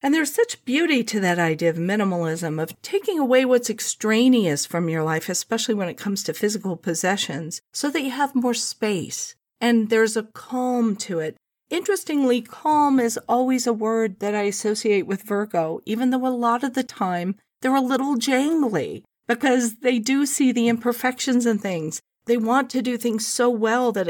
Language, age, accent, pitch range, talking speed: English, 40-59, American, 185-250 Hz, 185 wpm